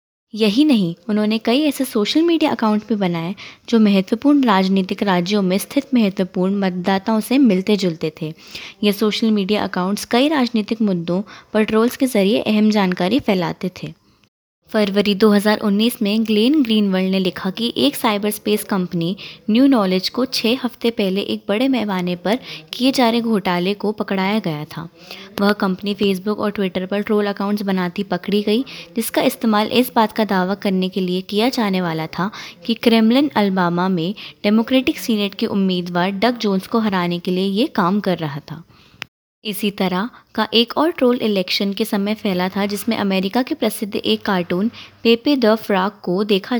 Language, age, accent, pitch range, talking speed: Hindi, 20-39, native, 190-225 Hz, 170 wpm